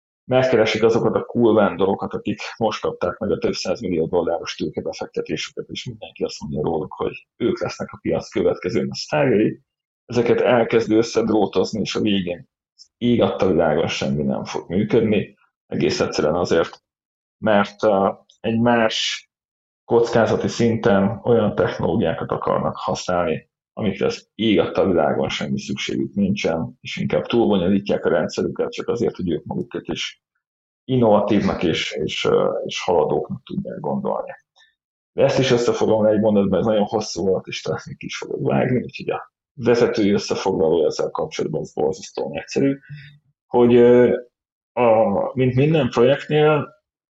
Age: 30-49